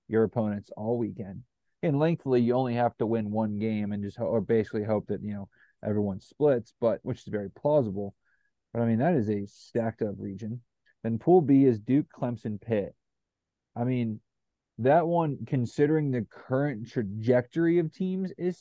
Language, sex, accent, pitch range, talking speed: English, male, American, 105-130 Hz, 180 wpm